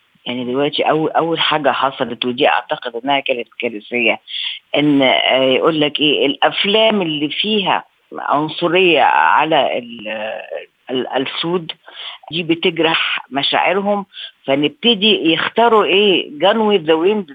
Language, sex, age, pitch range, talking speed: Arabic, female, 50-69, 140-200 Hz, 105 wpm